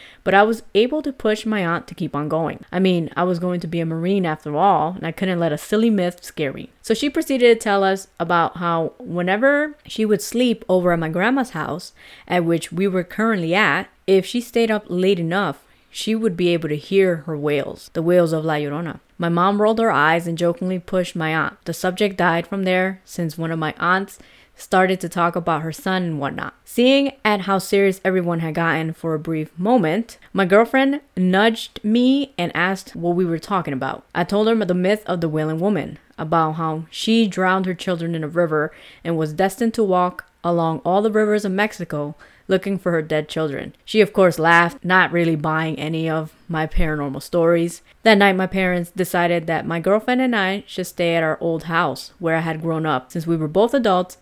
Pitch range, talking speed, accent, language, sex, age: 165-205 Hz, 215 wpm, American, English, female, 20-39